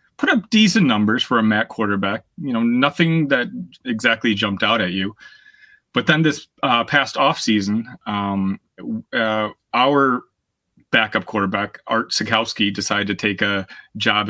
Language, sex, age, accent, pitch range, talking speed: English, male, 30-49, American, 105-140 Hz, 145 wpm